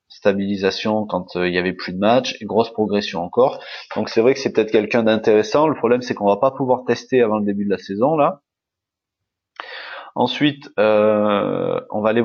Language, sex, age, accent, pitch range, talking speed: French, male, 30-49, French, 100-130 Hz, 200 wpm